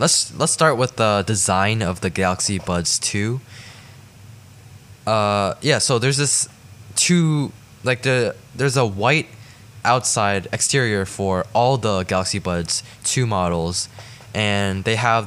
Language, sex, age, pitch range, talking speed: English, male, 10-29, 95-120 Hz, 135 wpm